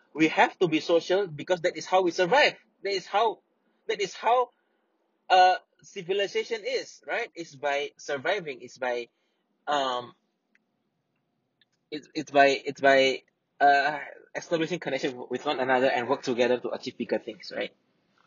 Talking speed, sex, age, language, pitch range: 150 wpm, male, 20-39, English, 135-185 Hz